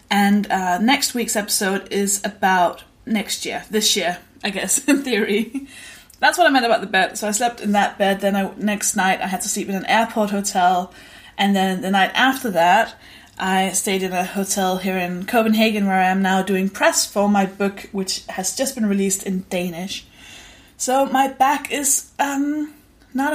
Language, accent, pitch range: English, British, 190-245 Hz